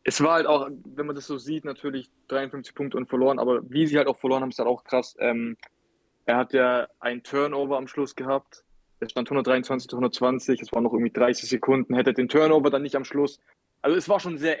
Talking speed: 225 wpm